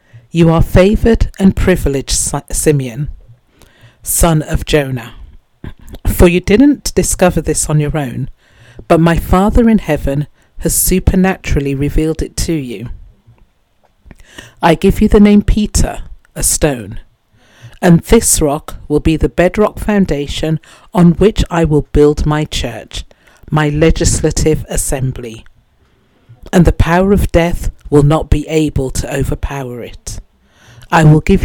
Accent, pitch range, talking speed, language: British, 125-170 Hz, 130 wpm, English